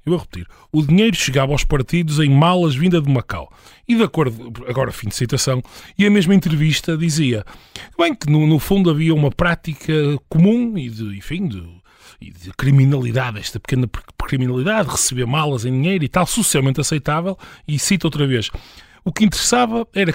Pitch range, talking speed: 130-190 Hz, 175 wpm